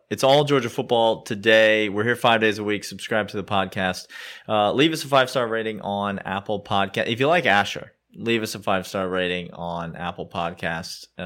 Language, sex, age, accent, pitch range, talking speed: English, male, 30-49, American, 95-120 Hz, 205 wpm